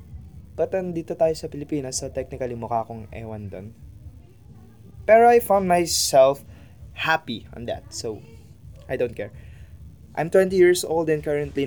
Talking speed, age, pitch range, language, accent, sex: 145 wpm, 20-39, 105-145 Hz, Filipino, native, male